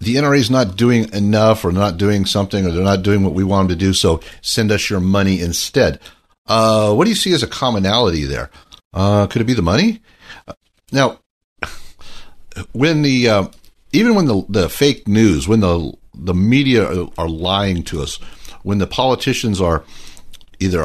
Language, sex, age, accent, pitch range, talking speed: English, male, 60-79, American, 90-115 Hz, 185 wpm